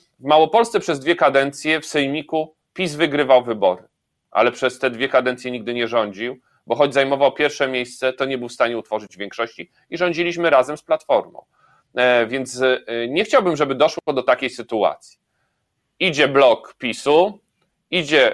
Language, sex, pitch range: Polish, male, 125-165 Hz